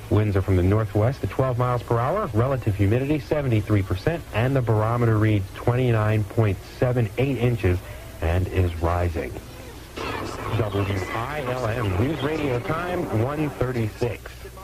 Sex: male